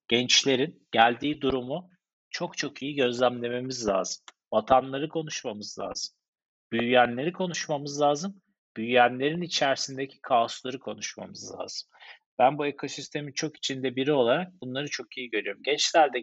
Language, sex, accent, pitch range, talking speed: Turkish, male, native, 120-145 Hz, 115 wpm